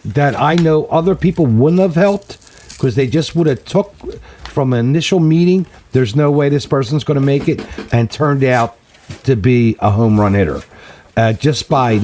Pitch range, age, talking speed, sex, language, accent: 115-155 Hz, 50-69, 195 wpm, male, English, American